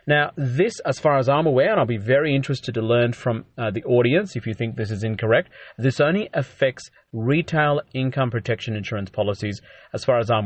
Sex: male